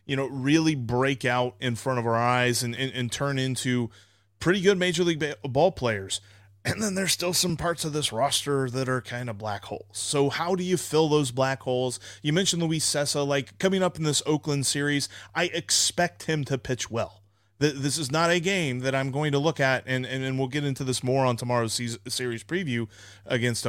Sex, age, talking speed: male, 30-49, 220 wpm